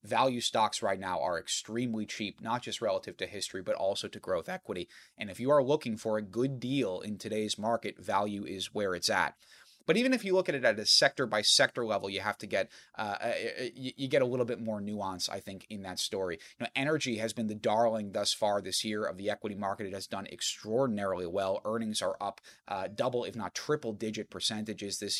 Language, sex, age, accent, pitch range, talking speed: English, male, 30-49, American, 100-125 Hz, 220 wpm